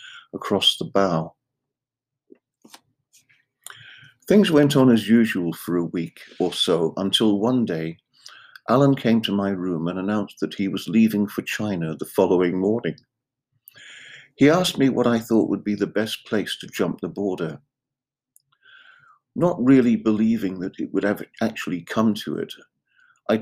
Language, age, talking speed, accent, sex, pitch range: English, 50-69, 150 wpm, British, male, 95-130 Hz